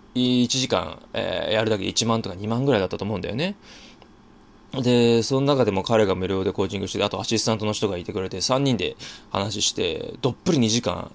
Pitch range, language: 95-115 Hz, Japanese